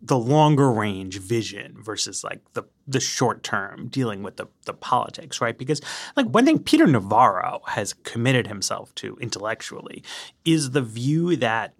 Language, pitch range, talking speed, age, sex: English, 115-170 Hz, 145 wpm, 30-49, male